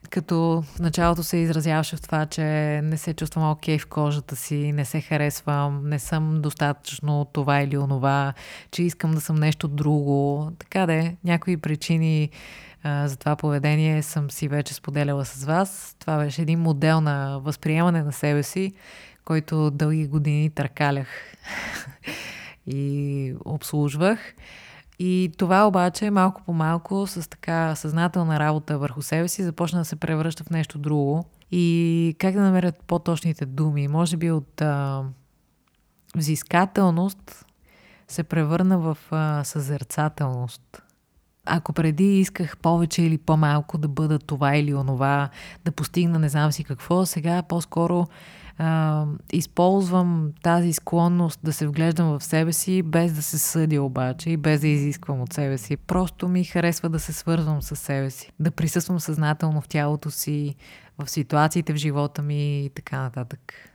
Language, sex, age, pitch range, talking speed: Bulgarian, female, 20-39, 145-170 Hz, 150 wpm